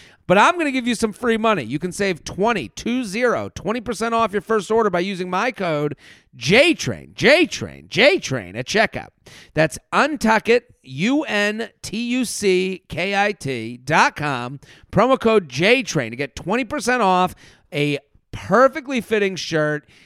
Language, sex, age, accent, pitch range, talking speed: English, male, 40-59, American, 130-200 Hz, 130 wpm